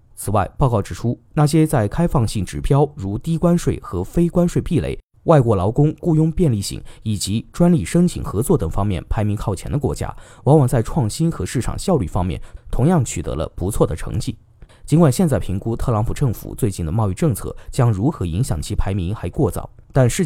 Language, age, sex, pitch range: Chinese, 20-39, male, 100-145 Hz